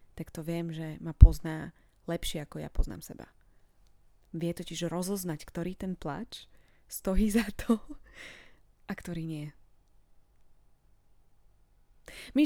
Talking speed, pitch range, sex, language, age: 115 wpm, 155-200 Hz, female, Slovak, 20-39